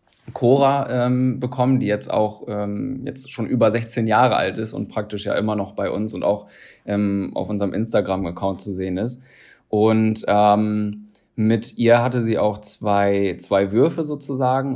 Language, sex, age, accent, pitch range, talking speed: German, male, 20-39, German, 105-115 Hz, 165 wpm